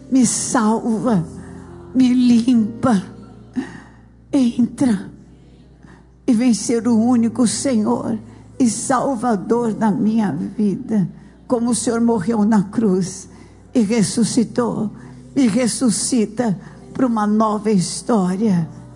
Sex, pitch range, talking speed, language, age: female, 185-230 Hz, 95 wpm, Portuguese, 60-79